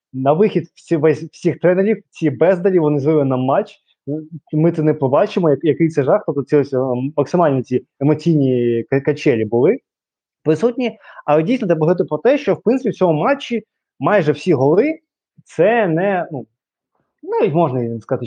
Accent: native